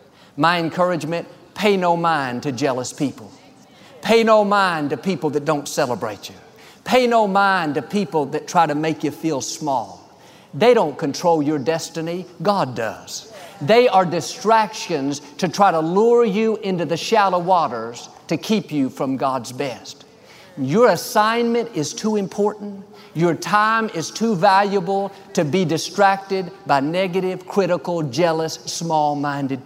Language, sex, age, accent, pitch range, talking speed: English, male, 50-69, American, 155-205 Hz, 145 wpm